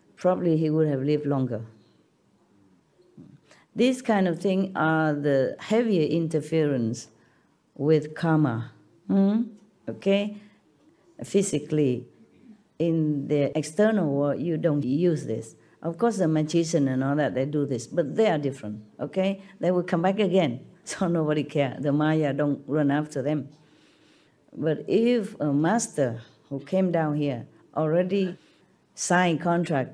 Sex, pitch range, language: female, 145-195 Hz, Korean